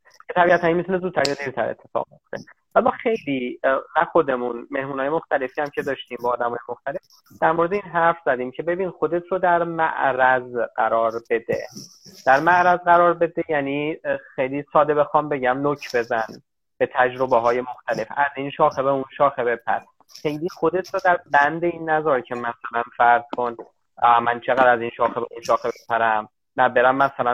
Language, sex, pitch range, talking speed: Persian, male, 125-165 Hz, 165 wpm